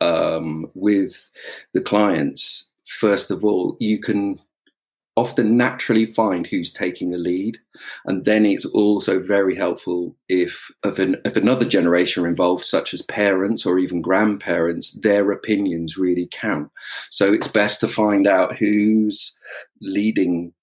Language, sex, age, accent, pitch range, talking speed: English, male, 40-59, British, 90-105 Hz, 140 wpm